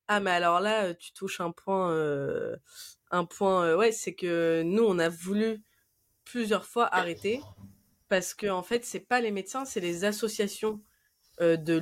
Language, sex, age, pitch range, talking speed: French, female, 20-39, 160-200 Hz, 180 wpm